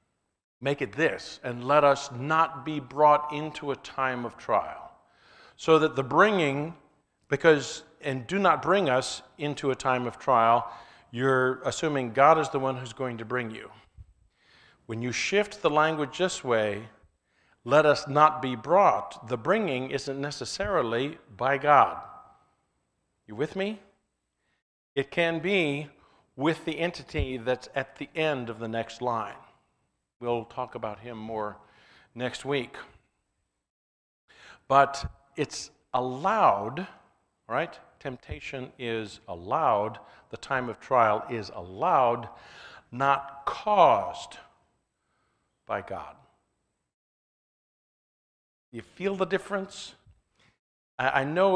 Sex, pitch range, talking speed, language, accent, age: male, 120-155 Hz, 125 wpm, English, American, 50-69